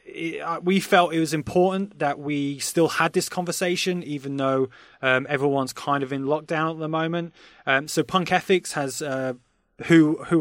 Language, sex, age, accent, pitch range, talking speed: English, male, 20-39, British, 135-160 Hz, 185 wpm